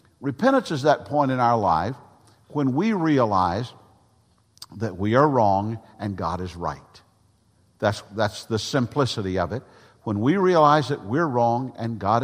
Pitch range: 105-135 Hz